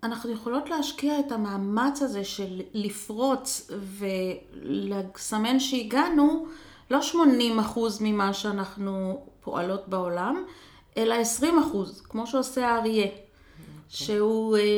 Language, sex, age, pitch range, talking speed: Hebrew, female, 30-49, 205-285 Hz, 90 wpm